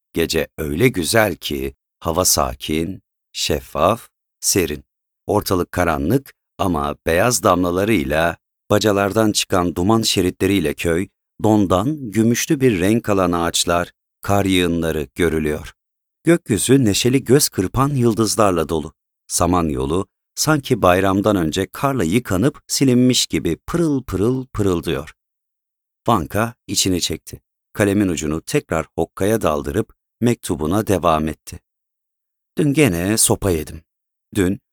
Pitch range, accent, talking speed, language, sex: 85-125 Hz, native, 105 wpm, Turkish, male